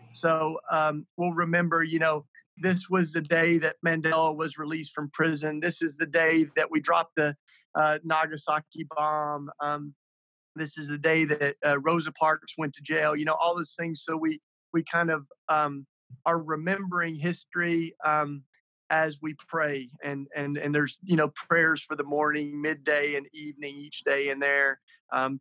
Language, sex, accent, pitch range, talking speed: English, male, American, 150-170 Hz, 175 wpm